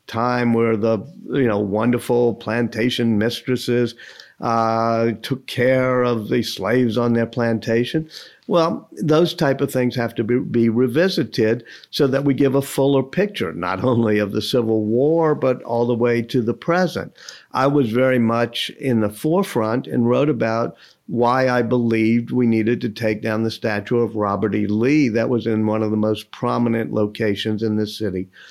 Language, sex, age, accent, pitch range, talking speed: English, male, 50-69, American, 110-130 Hz, 175 wpm